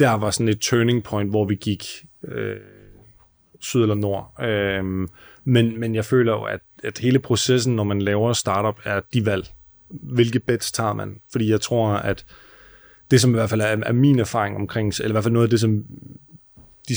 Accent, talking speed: native, 195 wpm